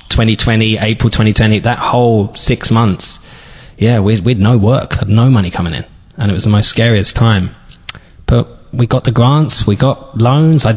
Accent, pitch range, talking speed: British, 105-130 Hz, 185 wpm